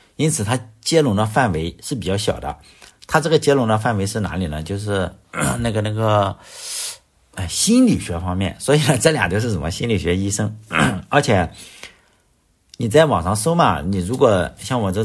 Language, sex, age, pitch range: Chinese, male, 50-69, 95-135 Hz